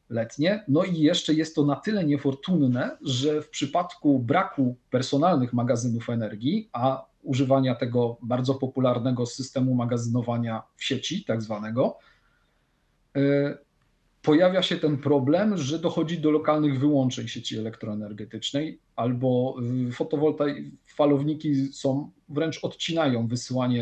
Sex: male